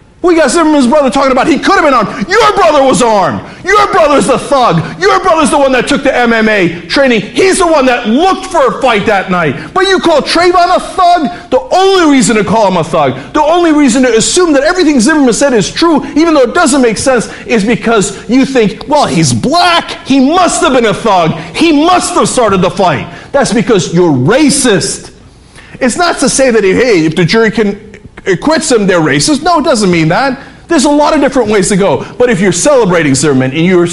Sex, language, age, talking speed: male, English, 50-69, 225 wpm